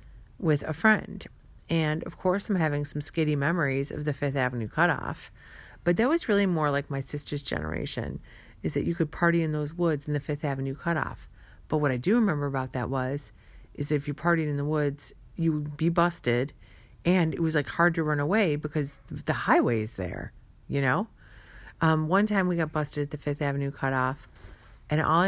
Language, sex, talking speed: English, female, 200 wpm